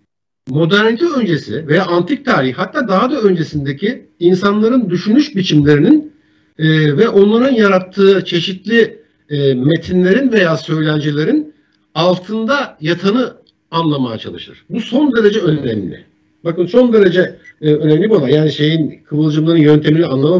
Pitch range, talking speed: 155-210 Hz, 120 wpm